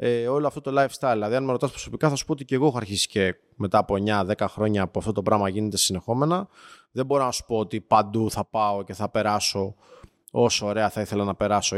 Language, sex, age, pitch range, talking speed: Greek, male, 20-39, 110-135 Hz, 240 wpm